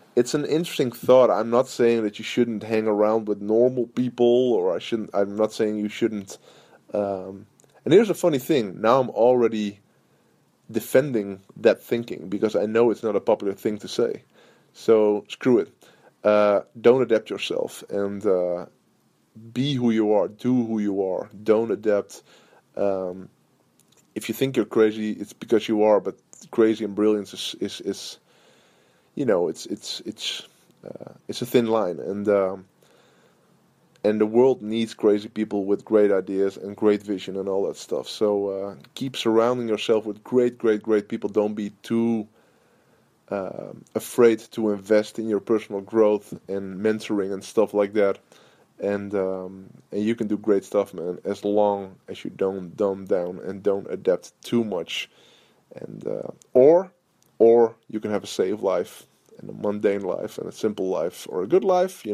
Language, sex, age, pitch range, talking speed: English, male, 20-39, 100-115 Hz, 175 wpm